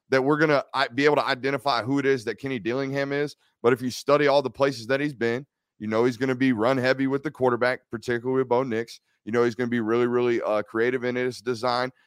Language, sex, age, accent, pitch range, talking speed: English, male, 30-49, American, 120-145 Hz, 265 wpm